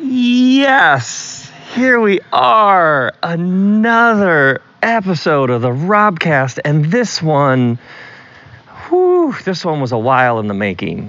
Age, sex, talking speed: 40-59, male, 115 wpm